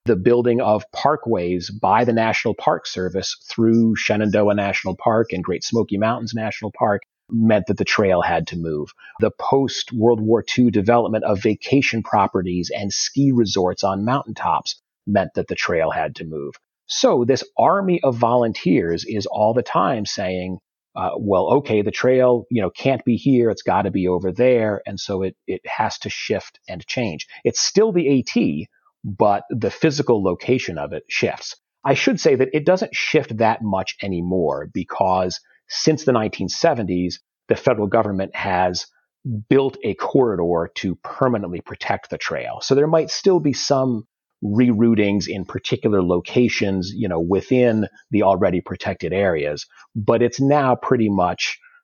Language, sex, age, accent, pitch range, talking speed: English, male, 40-59, American, 95-125 Hz, 160 wpm